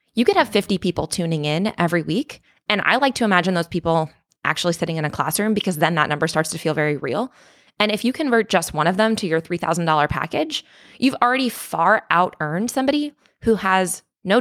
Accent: American